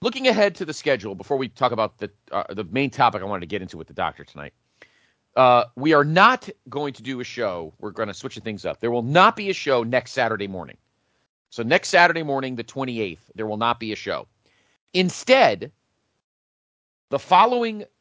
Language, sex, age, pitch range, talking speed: English, male, 40-59, 105-145 Hz, 205 wpm